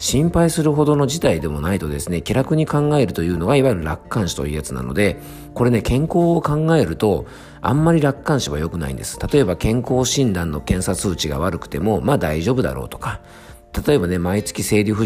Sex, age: male, 50-69